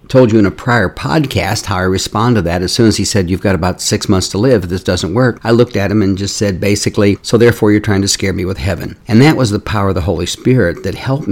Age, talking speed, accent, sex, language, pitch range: 60-79, 285 wpm, American, male, English, 95-120 Hz